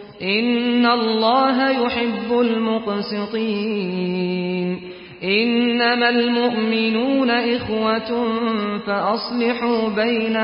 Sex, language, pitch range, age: male, Persian, 215-240 Hz, 40-59